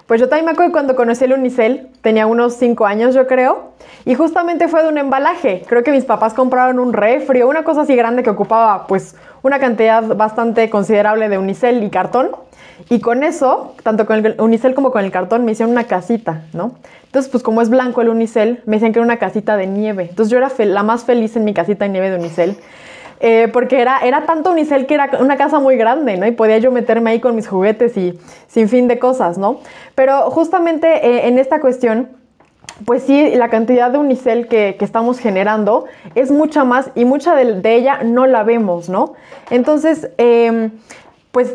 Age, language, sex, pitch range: 20-39, Spanish, female, 220-260 Hz